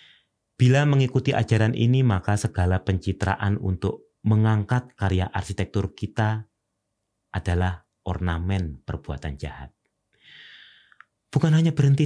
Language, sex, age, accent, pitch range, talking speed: Indonesian, male, 30-49, native, 90-110 Hz, 95 wpm